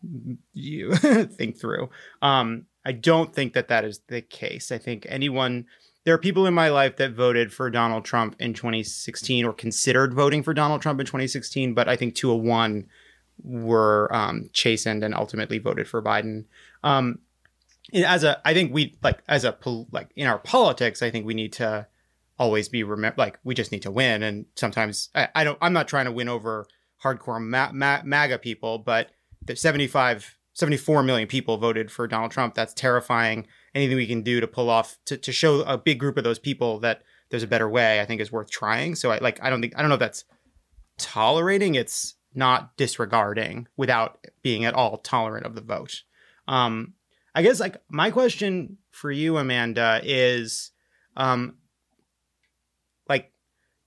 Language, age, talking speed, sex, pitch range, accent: English, 30-49, 185 wpm, male, 115-140 Hz, American